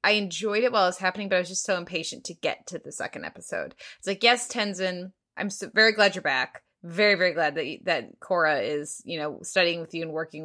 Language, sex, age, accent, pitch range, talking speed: English, female, 20-39, American, 170-225 Hz, 245 wpm